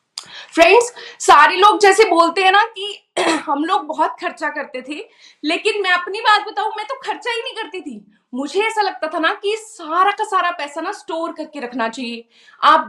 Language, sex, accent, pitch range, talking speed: Hindi, female, native, 310-405 Hz, 180 wpm